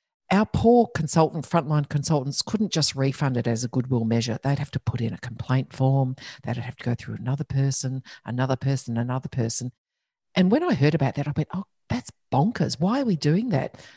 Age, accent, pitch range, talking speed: 50-69, Australian, 130-180 Hz, 205 wpm